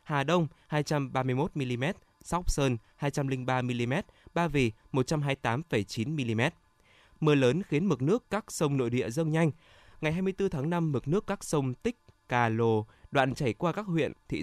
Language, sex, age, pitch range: Vietnamese, male, 20-39, 125-160 Hz